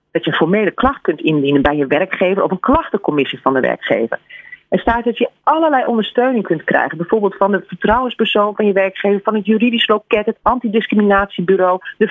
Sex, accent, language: female, Dutch, Dutch